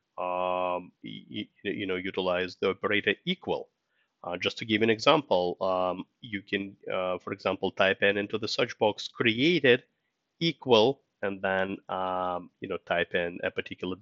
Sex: male